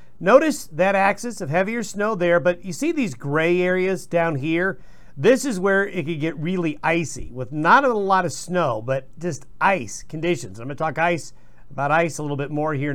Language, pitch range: English, 145-185 Hz